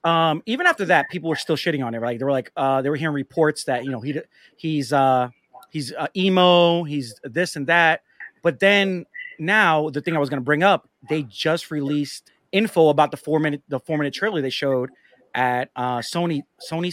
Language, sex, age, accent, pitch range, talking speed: English, male, 30-49, American, 140-175 Hz, 220 wpm